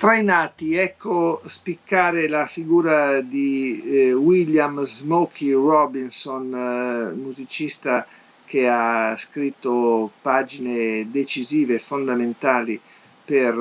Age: 50-69